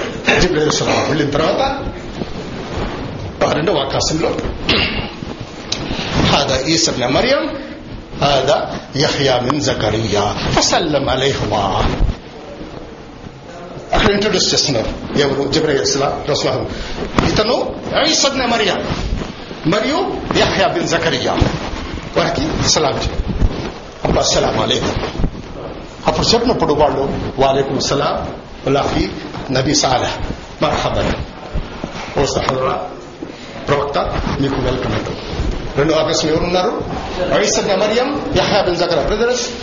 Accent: native